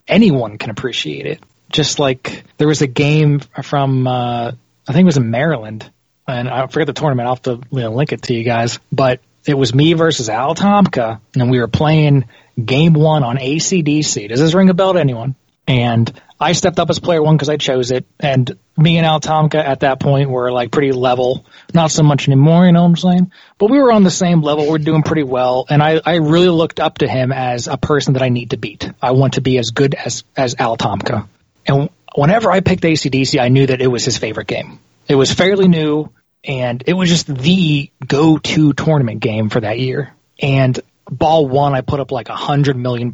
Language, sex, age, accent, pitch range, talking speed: English, male, 20-39, American, 125-155 Hz, 225 wpm